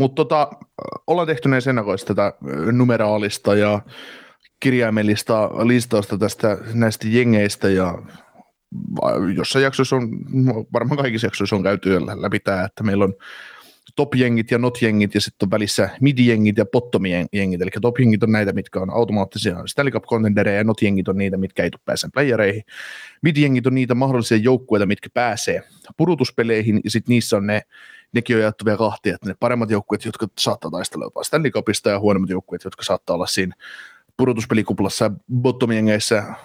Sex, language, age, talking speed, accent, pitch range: male, Finnish, 30-49, 150 wpm, native, 100-125 Hz